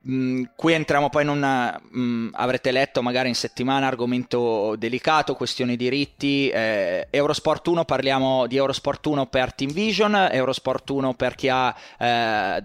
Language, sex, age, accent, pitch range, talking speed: Italian, male, 20-39, native, 110-135 Hz, 140 wpm